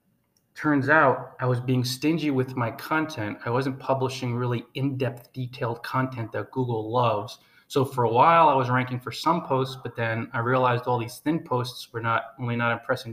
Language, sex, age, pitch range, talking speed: English, male, 20-39, 120-140 Hz, 190 wpm